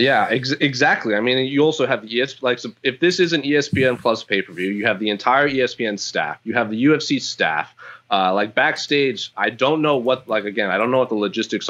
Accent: American